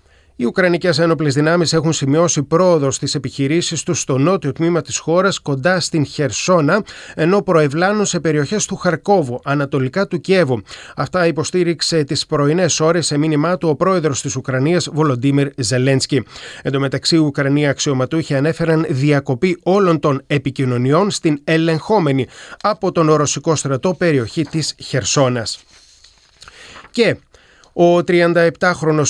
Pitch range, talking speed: 140-180 Hz, 130 wpm